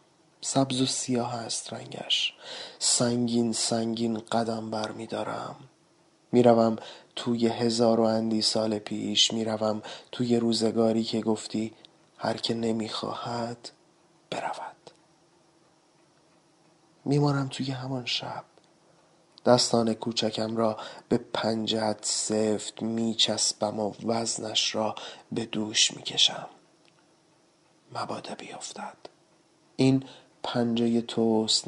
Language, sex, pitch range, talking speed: Persian, male, 110-160 Hz, 95 wpm